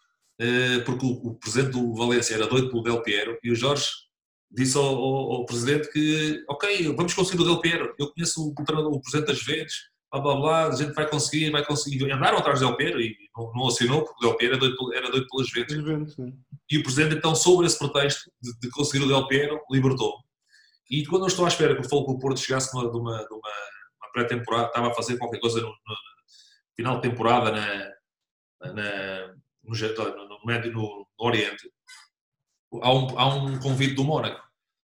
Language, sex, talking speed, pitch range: Portuguese, male, 200 wpm, 120-145 Hz